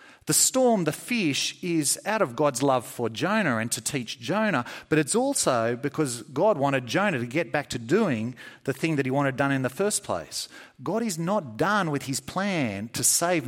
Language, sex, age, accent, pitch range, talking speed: English, male, 40-59, Australian, 125-180 Hz, 205 wpm